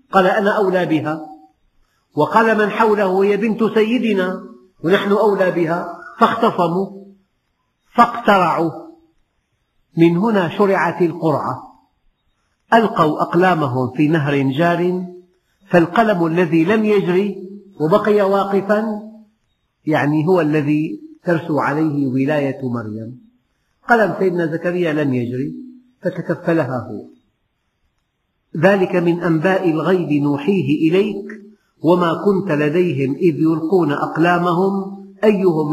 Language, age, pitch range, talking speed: Arabic, 50-69, 145-195 Hz, 95 wpm